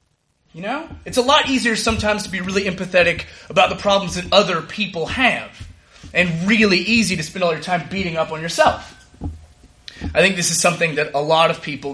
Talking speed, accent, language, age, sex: 200 wpm, American, English, 30-49, male